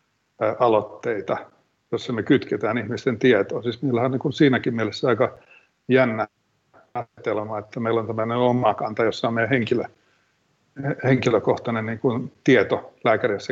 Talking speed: 130 wpm